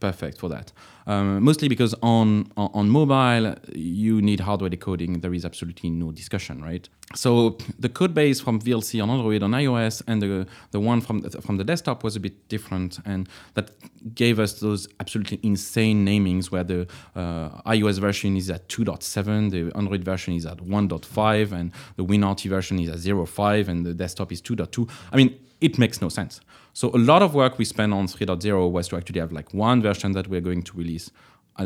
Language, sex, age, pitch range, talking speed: English, male, 30-49, 95-115 Hz, 200 wpm